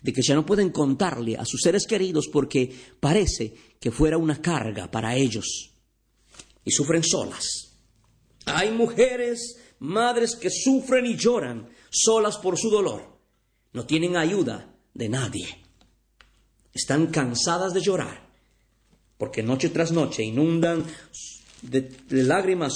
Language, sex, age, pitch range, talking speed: Spanish, male, 50-69, 120-185 Hz, 125 wpm